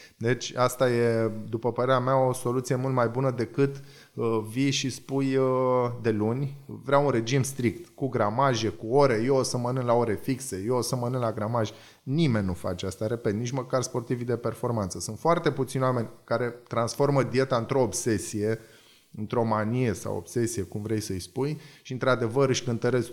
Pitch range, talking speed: 110-130 Hz, 185 wpm